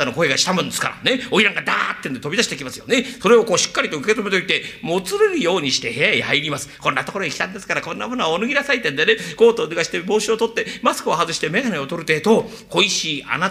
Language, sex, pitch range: Japanese, male, 185-275 Hz